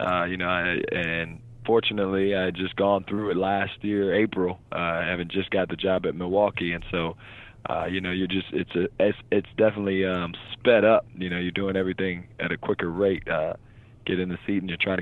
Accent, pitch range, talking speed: American, 90-100 Hz, 210 wpm